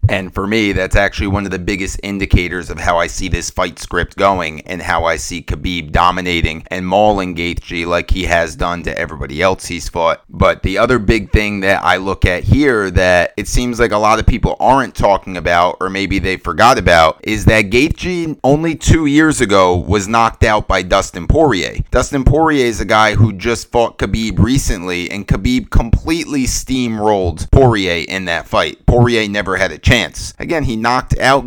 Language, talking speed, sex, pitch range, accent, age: English, 195 wpm, male, 95-120 Hz, American, 30-49